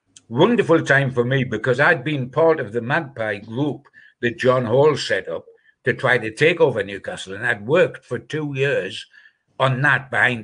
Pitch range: 115-165 Hz